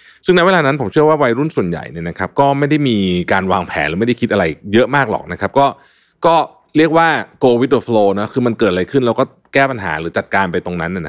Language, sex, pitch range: Thai, male, 90-130 Hz